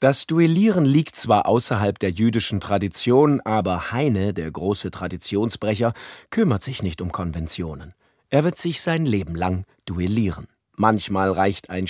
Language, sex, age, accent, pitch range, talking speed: German, male, 40-59, German, 95-130 Hz, 140 wpm